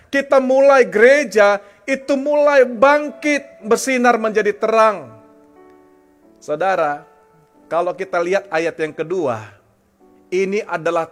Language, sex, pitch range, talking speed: English, male, 135-210 Hz, 95 wpm